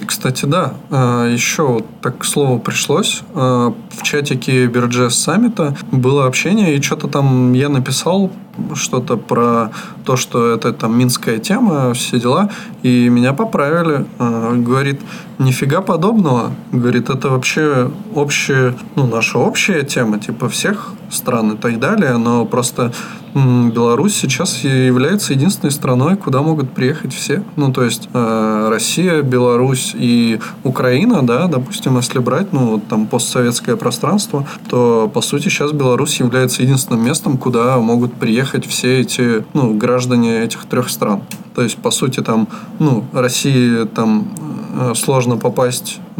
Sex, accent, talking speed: male, native, 130 wpm